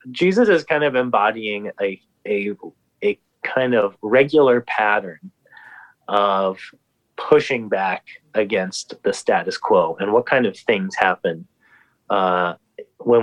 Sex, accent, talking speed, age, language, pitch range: male, American, 120 wpm, 30-49, English, 110-150 Hz